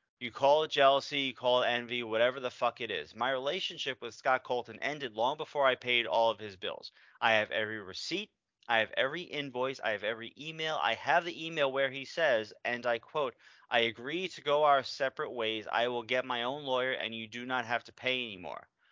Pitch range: 120-145 Hz